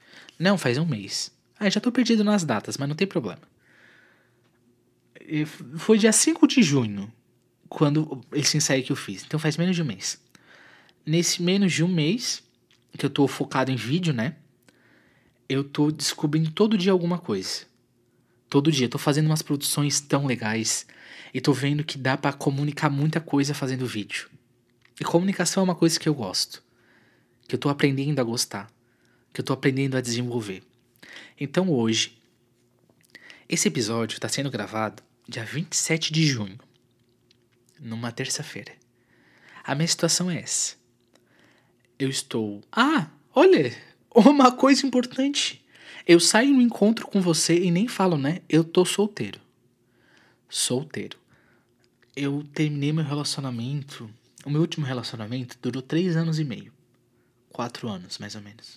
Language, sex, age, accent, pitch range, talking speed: Portuguese, male, 20-39, Brazilian, 120-170 Hz, 150 wpm